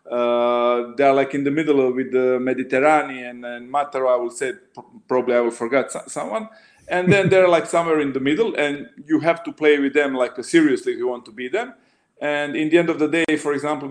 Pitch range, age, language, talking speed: 125-150 Hz, 40-59, German, 240 wpm